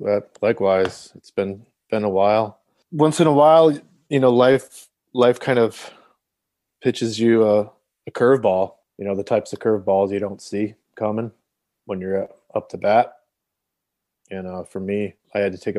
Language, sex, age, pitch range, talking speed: English, male, 20-39, 95-115 Hz, 165 wpm